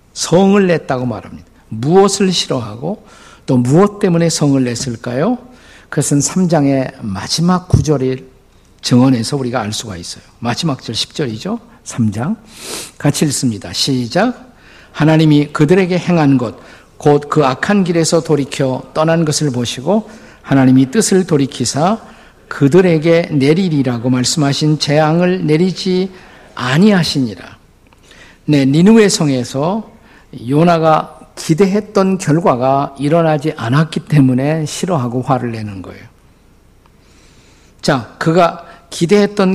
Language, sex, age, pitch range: Korean, male, 50-69, 130-175 Hz